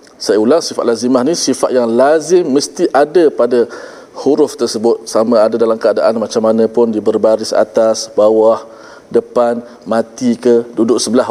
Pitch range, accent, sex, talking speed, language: 115-150 Hz, Malaysian, male, 155 wpm, Malayalam